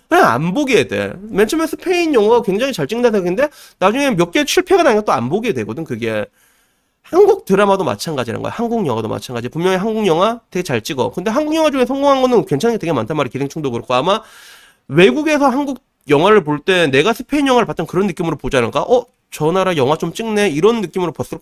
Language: Korean